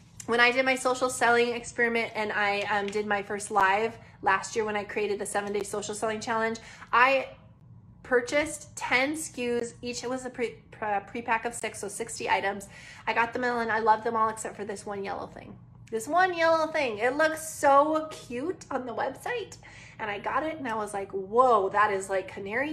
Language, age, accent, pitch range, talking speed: English, 20-39, American, 210-260 Hz, 210 wpm